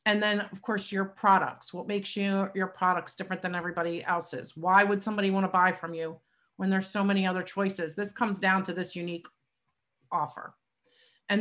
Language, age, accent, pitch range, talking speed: English, 40-59, American, 190-235 Hz, 190 wpm